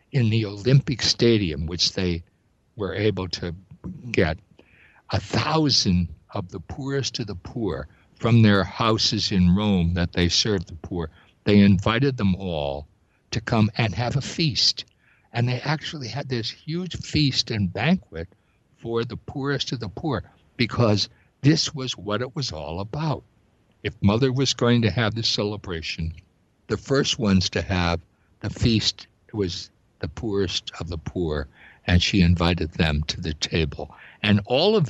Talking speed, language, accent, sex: 160 wpm, English, American, male